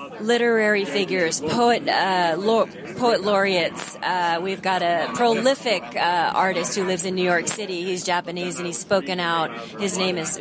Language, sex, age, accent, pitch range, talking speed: English, female, 30-49, American, 180-235 Hz, 155 wpm